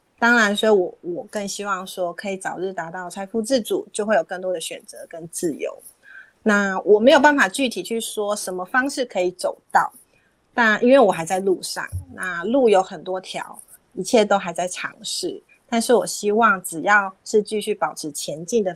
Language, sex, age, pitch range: Chinese, female, 30-49, 180-220 Hz